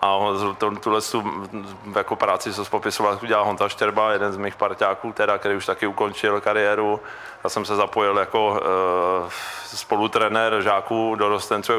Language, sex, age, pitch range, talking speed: Czech, male, 20-39, 100-110 Hz, 160 wpm